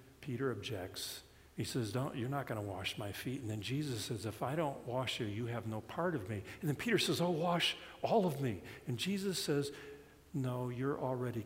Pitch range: 85-130 Hz